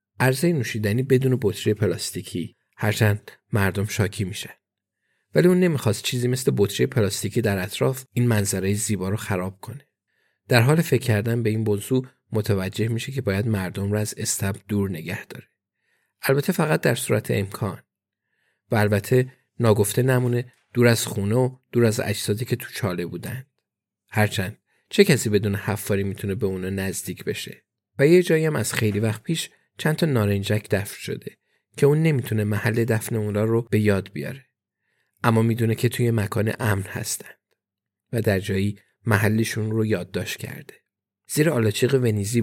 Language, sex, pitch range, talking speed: Persian, male, 105-125 Hz, 155 wpm